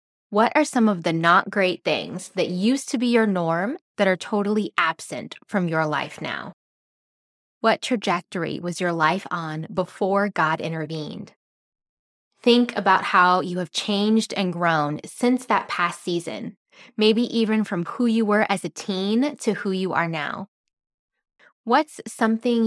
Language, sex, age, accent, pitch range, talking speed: English, female, 20-39, American, 165-220 Hz, 155 wpm